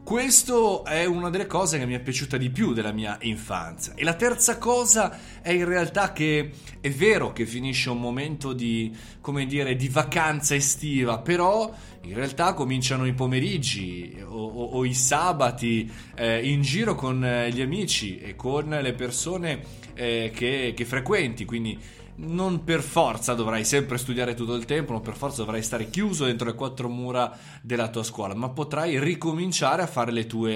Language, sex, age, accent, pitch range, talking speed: Italian, male, 20-39, native, 120-160 Hz, 175 wpm